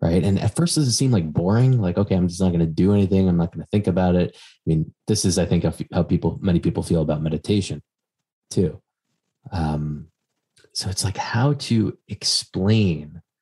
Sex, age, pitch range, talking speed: male, 20-39, 80-105 Hz, 205 wpm